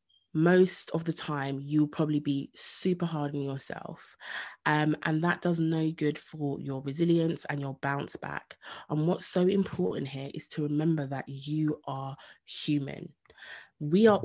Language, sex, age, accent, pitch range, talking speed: English, female, 20-39, British, 145-170 Hz, 160 wpm